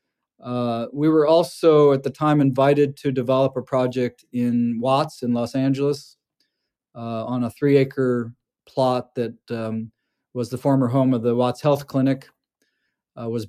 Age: 40-59